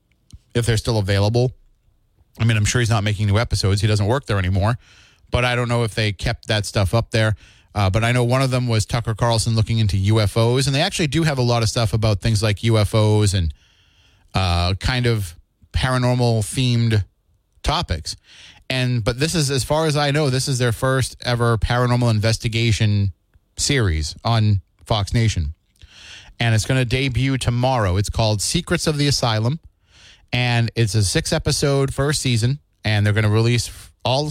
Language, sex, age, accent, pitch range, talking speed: English, male, 30-49, American, 105-130 Hz, 185 wpm